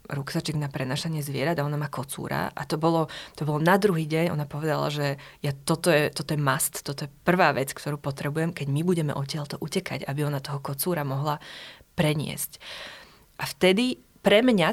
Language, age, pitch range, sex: Slovak, 20-39, 145-170 Hz, female